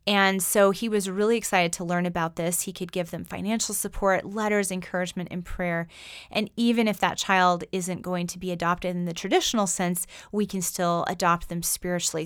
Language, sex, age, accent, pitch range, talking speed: English, female, 30-49, American, 175-205 Hz, 195 wpm